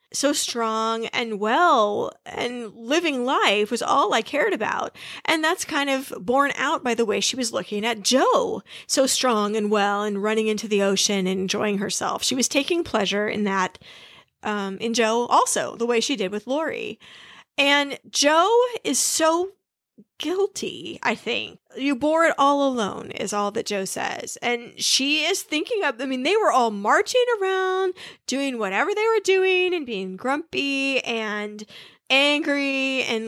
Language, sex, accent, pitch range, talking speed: English, female, American, 225-315 Hz, 170 wpm